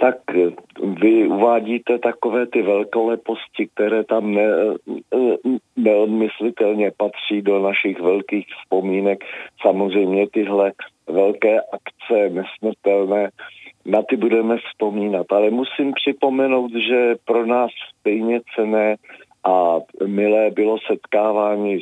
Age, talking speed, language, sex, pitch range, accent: 40-59, 95 wpm, Czech, male, 100-120 Hz, native